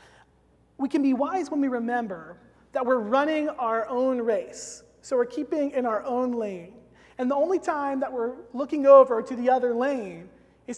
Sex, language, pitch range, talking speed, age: male, English, 220-270 Hz, 185 wpm, 30-49